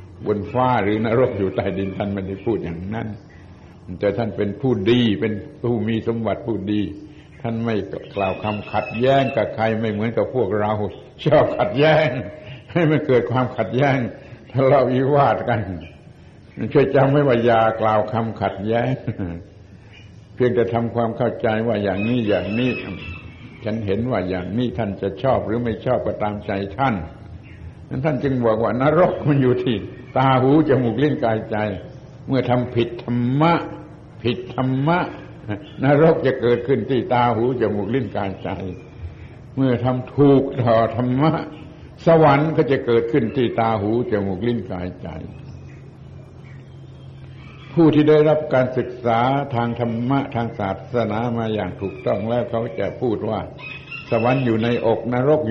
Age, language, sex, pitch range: 70-89, Thai, male, 105-130 Hz